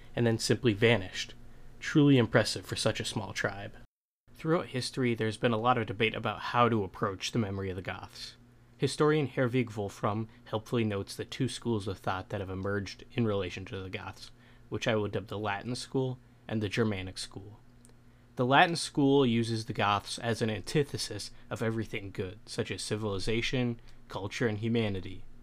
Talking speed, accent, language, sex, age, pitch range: 175 wpm, American, English, male, 20-39, 105-120 Hz